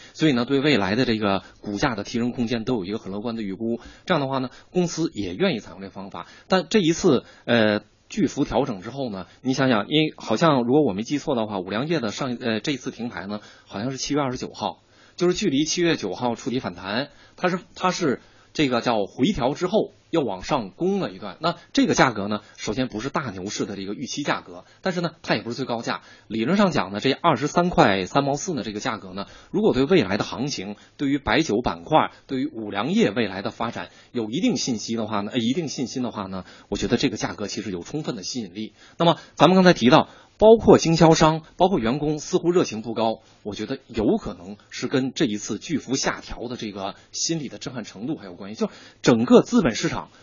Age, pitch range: 20-39, 105-165 Hz